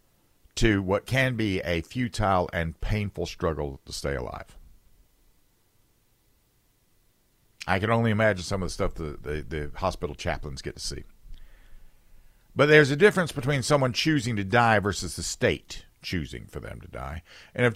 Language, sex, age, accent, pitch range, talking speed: English, male, 50-69, American, 85-120 Hz, 160 wpm